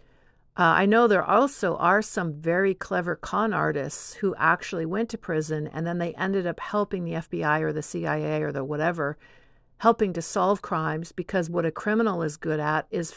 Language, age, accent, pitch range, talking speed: English, 50-69, American, 155-190 Hz, 190 wpm